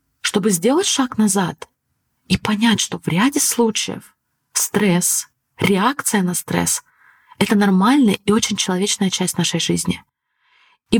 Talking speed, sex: 130 wpm, female